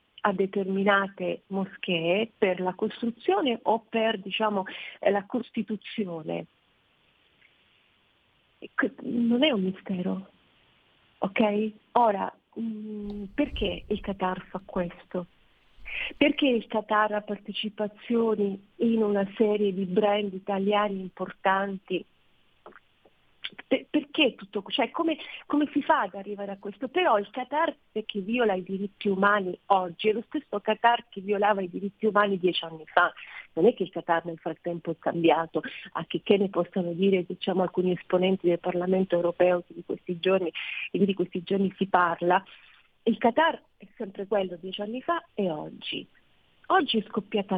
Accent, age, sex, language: native, 40-59, female, Italian